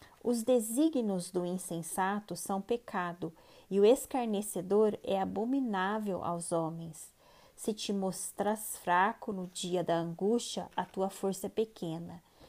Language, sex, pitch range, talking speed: Portuguese, female, 185-235 Hz, 125 wpm